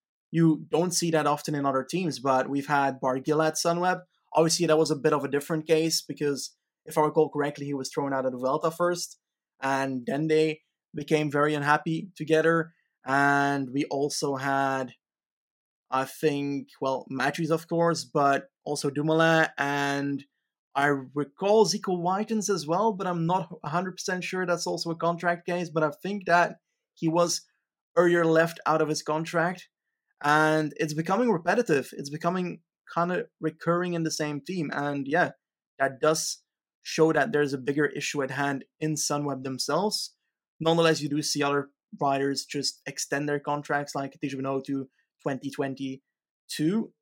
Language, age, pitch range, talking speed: English, 20-39, 140-165 Hz, 165 wpm